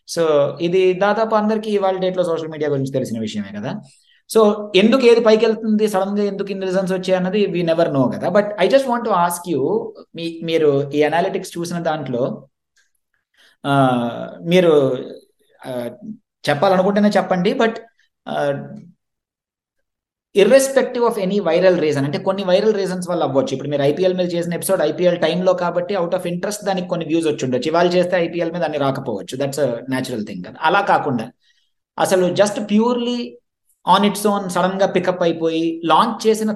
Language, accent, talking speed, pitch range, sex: Telugu, native, 150 wpm, 145-200 Hz, male